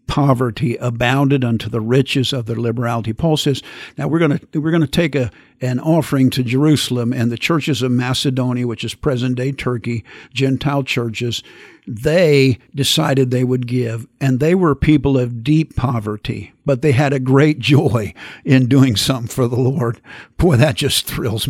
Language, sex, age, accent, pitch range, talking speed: English, male, 50-69, American, 120-140 Hz, 165 wpm